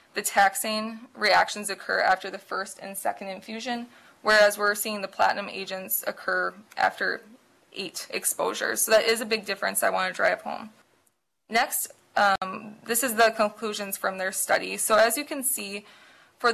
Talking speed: 165 wpm